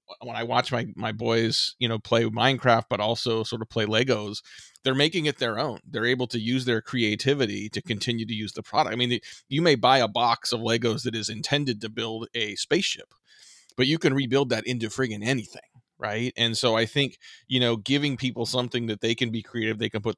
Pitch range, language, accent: 110-125 Hz, English, American